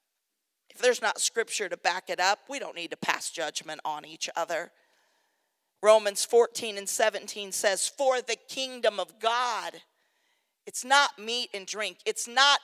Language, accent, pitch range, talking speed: English, American, 205-290 Hz, 160 wpm